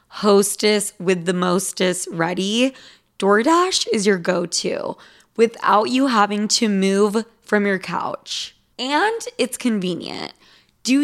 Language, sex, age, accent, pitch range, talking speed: English, female, 20-39, American, 185-230 Hz, 115 wpm